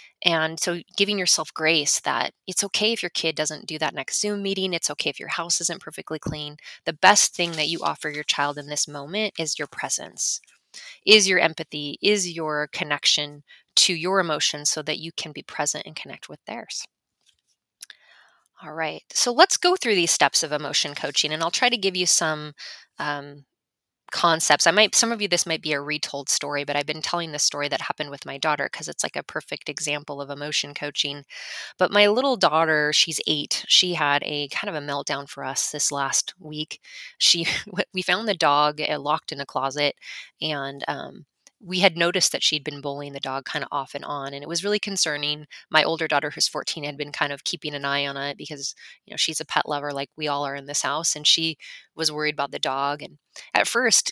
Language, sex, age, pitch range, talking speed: English, female, 20-39, 145-185 Hz, 215 wpm